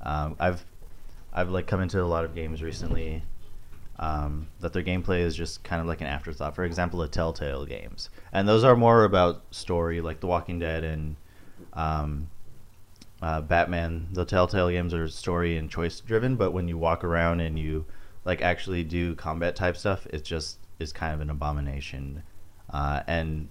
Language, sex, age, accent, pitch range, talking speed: English, male, 30-49, American, 80-95 Hz, 180 wpm